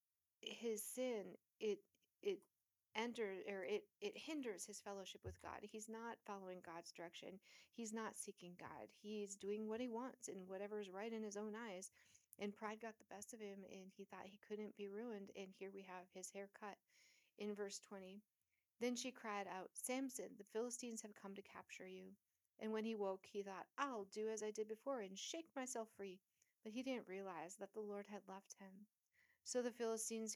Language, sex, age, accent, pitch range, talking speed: English, female, 40-59, American, 190-225 Hz, 200 wpm